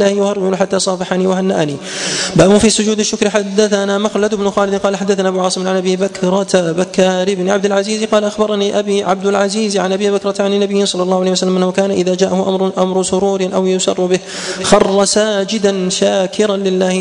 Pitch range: 185-200 Hz